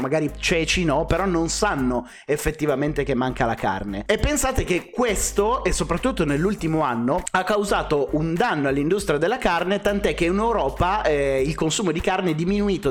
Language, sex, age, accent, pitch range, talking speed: Italian, male, 30-49, native, 140-185 Hz, 170 wpm